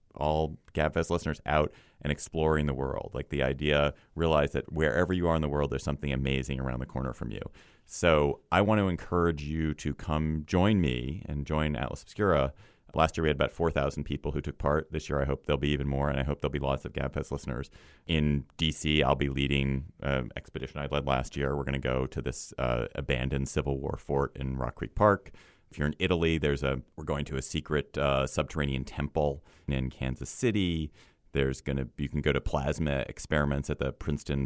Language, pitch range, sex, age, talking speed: English, 65-75 Hz, male, 30-49, 210 wpm